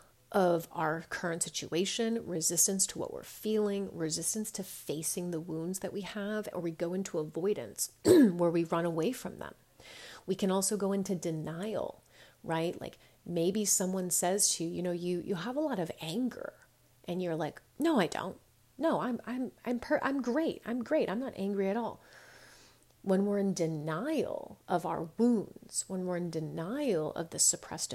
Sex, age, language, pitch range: female, 30-49, English, 165-200 Hz